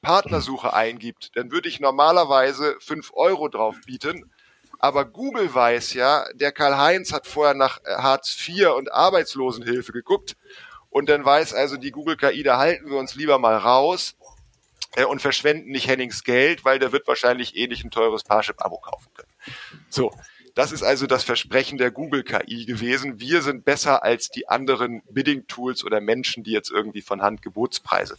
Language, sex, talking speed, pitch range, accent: German, male, 165 wpm, 125-155 Hz, German